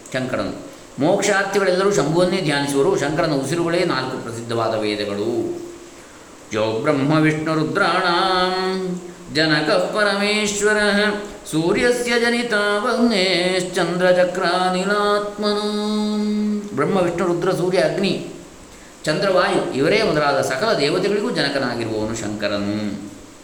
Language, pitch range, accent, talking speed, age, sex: Kannada, 115-185 Hz, native, 65 wpm, 20-39, male